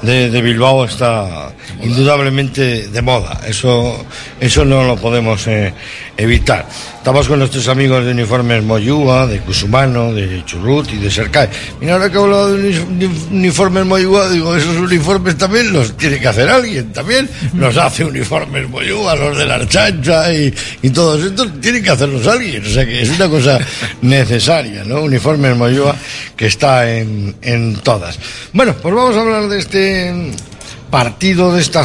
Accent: Spanish